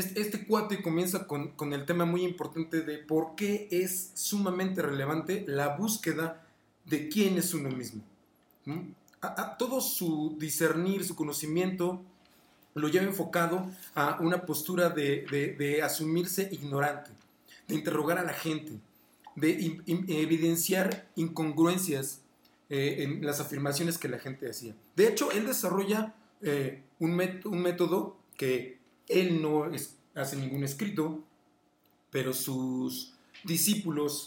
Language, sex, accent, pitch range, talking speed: Spanish, male, Mexican, 145-180 Hz, 135 wpm